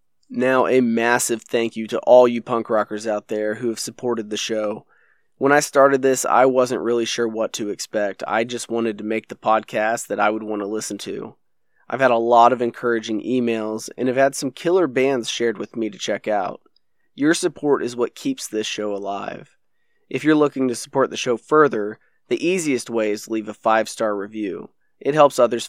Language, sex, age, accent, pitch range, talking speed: English, male, 20-39, American, 110-130 Hz, 210 wpm